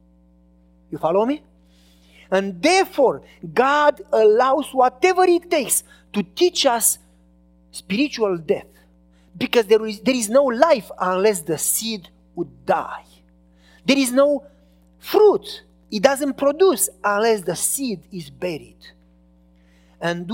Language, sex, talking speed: English, male, 120 wpm